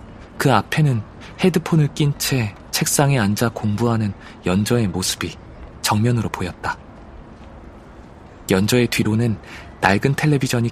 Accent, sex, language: native, male, Korean